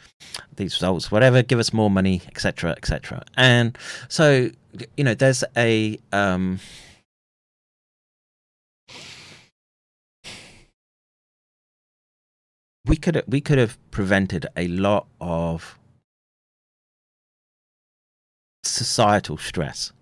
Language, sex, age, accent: English, male, 30-49, British